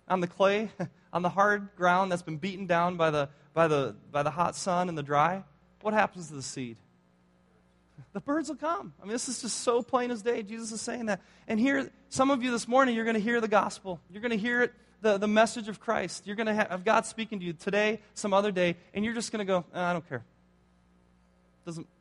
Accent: American